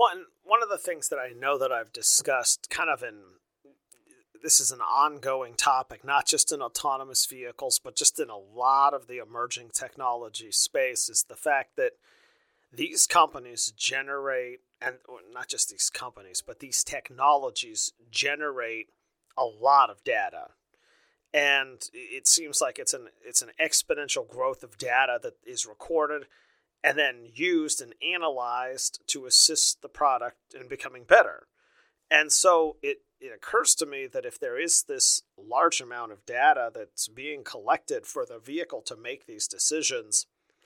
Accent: American